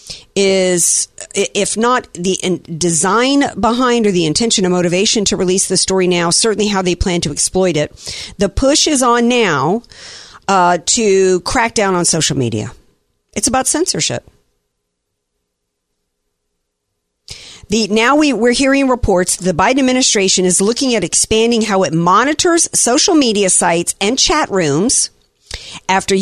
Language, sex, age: English, female, 50-69